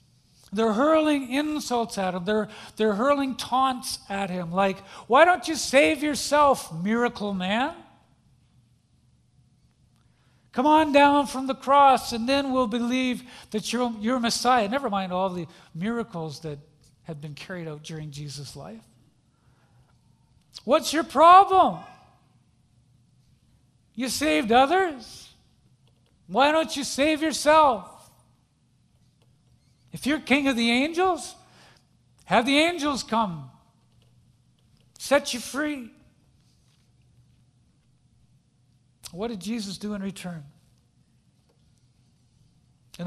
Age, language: 50-69, English